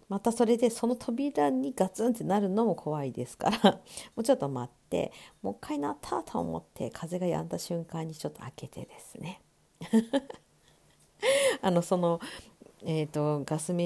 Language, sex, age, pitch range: Japanese, female, 50-69, 135-195 Hz